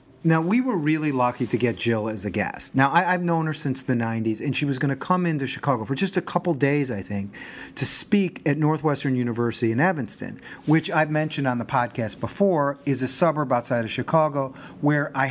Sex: male